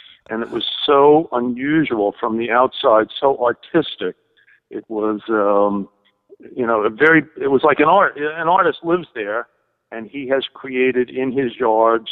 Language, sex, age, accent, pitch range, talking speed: English, male, 50-69, American, 110-130 Hz, 165 wpm